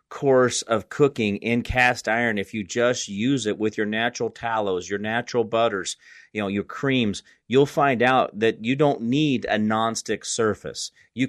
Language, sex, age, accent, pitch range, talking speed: English, male, 30-49, American, 115-135 Hz, 175 wpm